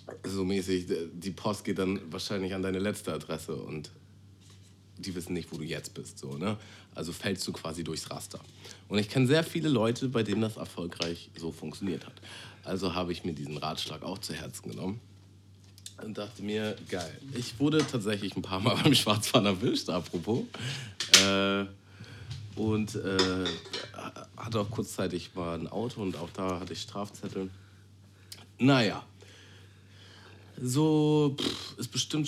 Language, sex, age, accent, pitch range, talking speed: German, male, 40-59, German, 90-105 Hz, 150 wpm